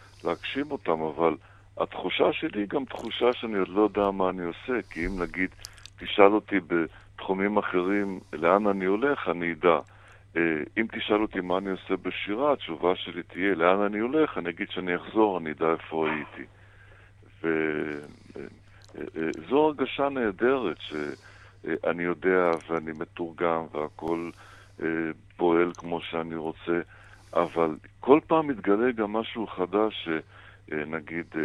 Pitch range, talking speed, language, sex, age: 85-105 Hz, 130 wpm, Hebrew, male, 60-79